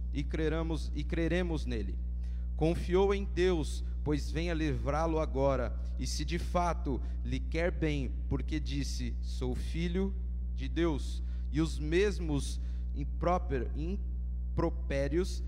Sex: male